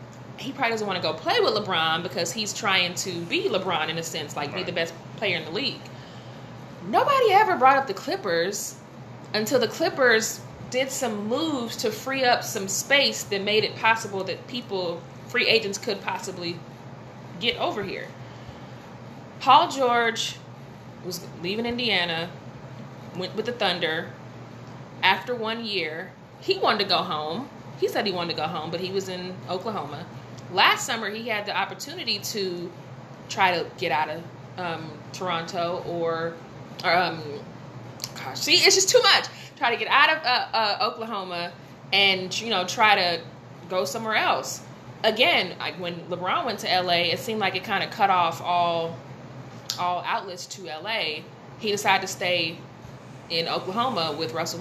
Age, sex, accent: 20-39, female, American